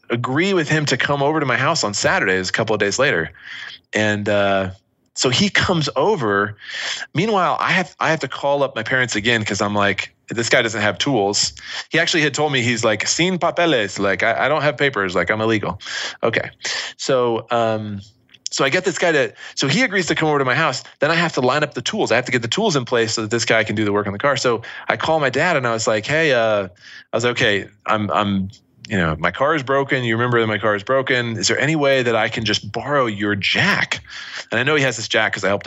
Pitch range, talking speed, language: 105-135 Hz, 260 wpm, English